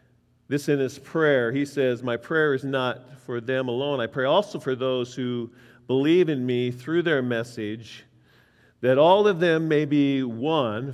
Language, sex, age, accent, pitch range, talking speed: English, male, 50-69, American, 120-175 Hz, 175 wpm